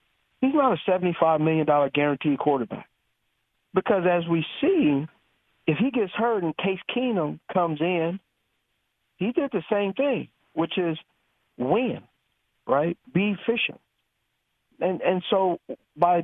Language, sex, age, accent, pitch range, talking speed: English, male, 50-69, American, 135-170 Hz, 130 wpm